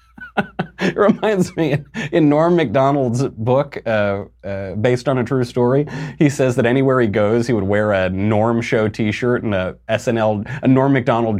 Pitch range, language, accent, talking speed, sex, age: 95-120 Hz, English, American, 175 wpm, male, 30-49